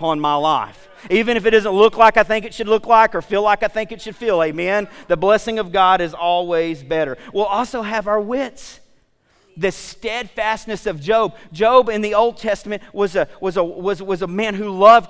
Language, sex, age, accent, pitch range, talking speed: English, male, 40-59, American, 185-225 Hz, 220 wpm